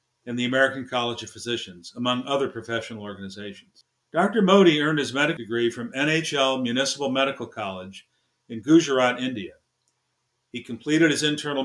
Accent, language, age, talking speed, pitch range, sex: American, English, 50-69, 145 wpm, 120-155 Hz, male